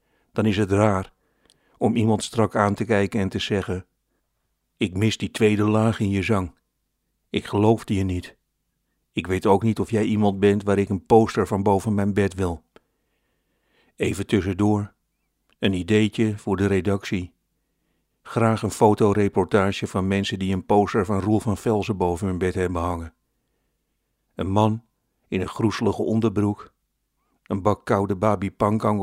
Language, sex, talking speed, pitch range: Dutch, male, 155 wpm, 95-110 Hz